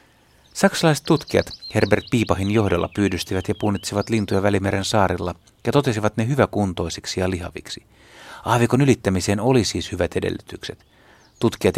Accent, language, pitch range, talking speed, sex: native, Finnish, 90-115 Hz, 120 wpm, male